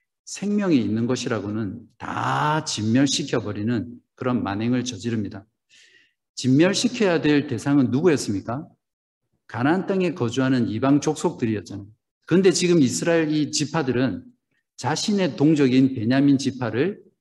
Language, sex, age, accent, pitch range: Korean, male, 50-69, native, 120-155 Hz